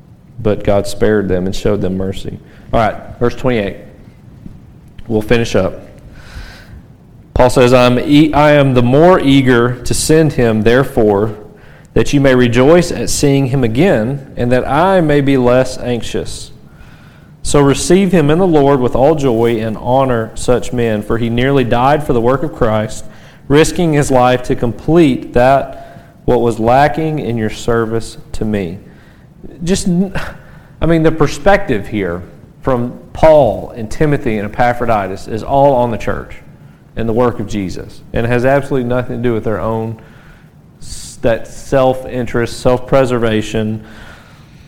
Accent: American